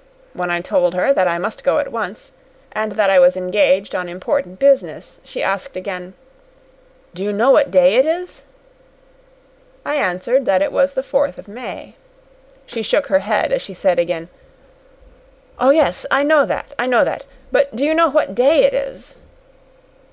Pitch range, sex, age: 200-295 Hz, female, 30-49